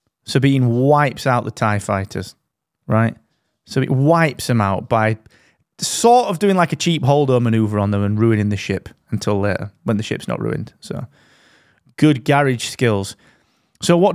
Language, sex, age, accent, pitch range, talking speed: English, male, 30-49, British, 110-155 Hz, 170 wpm